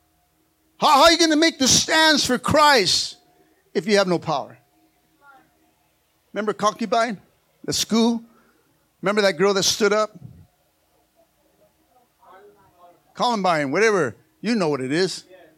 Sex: male